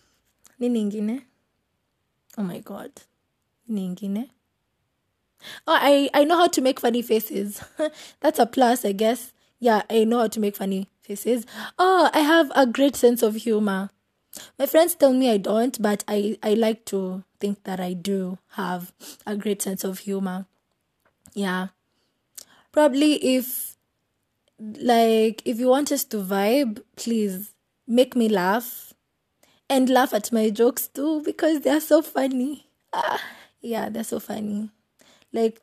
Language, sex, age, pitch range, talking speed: English, female, 20-39, 200-250 Hz, 145 wpm